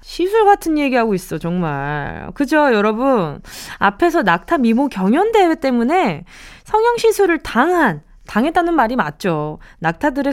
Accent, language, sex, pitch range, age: native, Korean, female, 200-330 Hz, 20-39